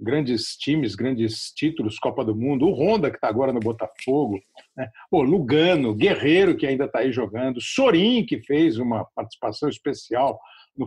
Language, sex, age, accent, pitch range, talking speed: Portuguese, male, 50-69, Brazilian, 125-165 Hz, 165 wpm